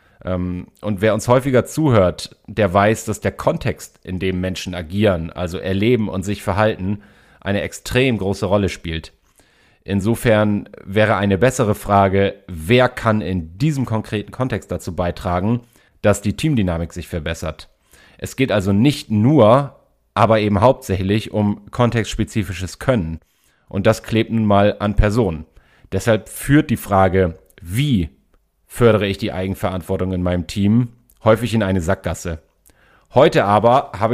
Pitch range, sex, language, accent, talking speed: 95-115 Hz, male, German, German, 140 wpm